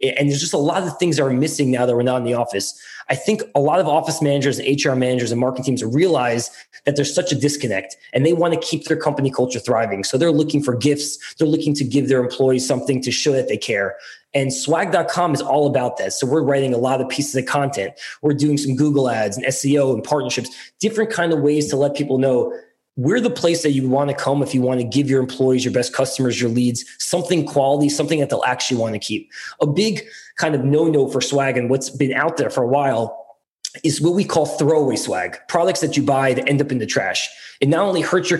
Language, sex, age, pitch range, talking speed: English, male, 20-39, 130-160 Hz, 250 wpm